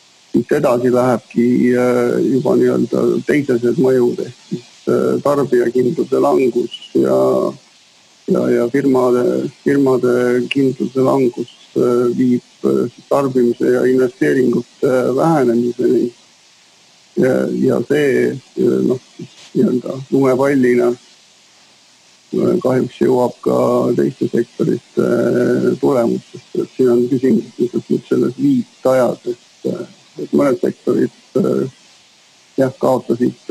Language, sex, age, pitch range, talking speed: English, male, 50-69, 120-130 Hz, 80 wpm